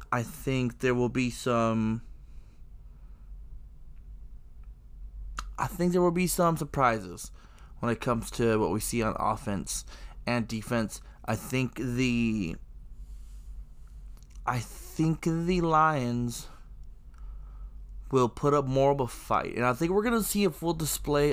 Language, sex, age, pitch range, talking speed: English, male, 20-39, 110-145 Hz, 130 wpm